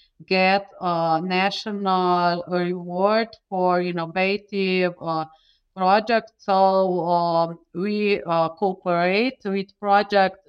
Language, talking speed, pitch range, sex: English, 85 wpm, 190-230 Hz, female